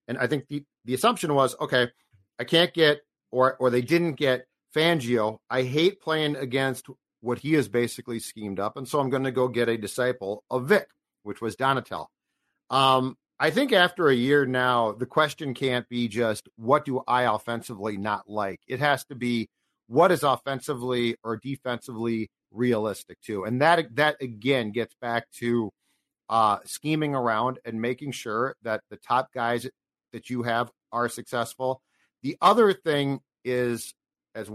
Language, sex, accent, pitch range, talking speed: English, male, American, 120-150 Hz, 170 wpm